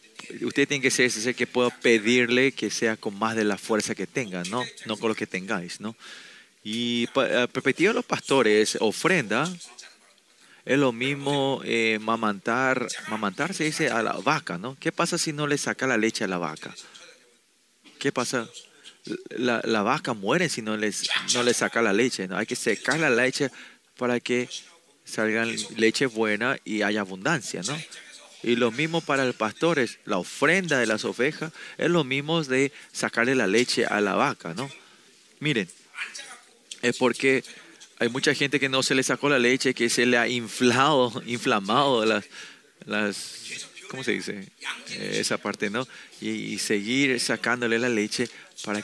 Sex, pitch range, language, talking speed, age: male, 110-135 Hz, Spanish, 170 wpm, 30-49